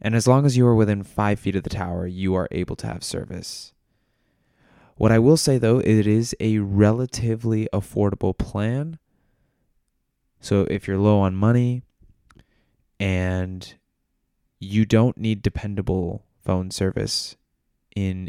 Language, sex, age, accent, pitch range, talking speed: English, male, 20-39, American, 95-115 Hz, 145 wpm